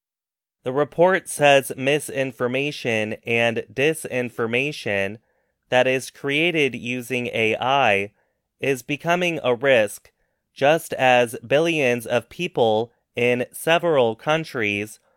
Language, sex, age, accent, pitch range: Chinese, male, 20-39, American, 115-145 Hz